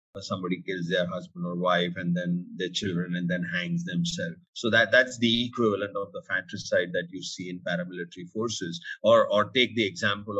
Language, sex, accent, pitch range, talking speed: English, male, Indian, 100-145 Hz, 190 wpm